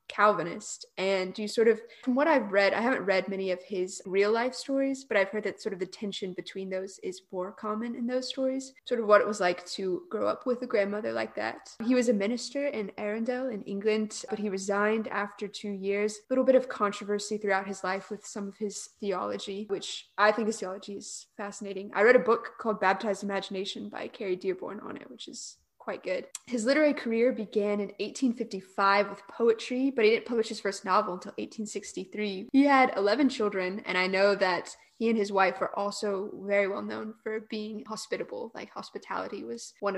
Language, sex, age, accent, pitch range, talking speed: English, female, 20-39, American, 200-240 Hz, 210 wpm